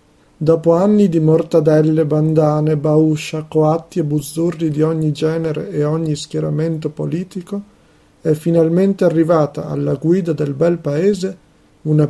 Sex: male